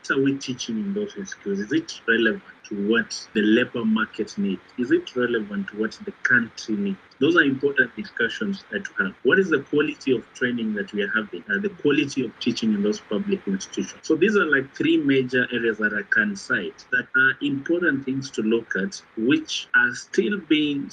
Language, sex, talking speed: English, male, 205 wpm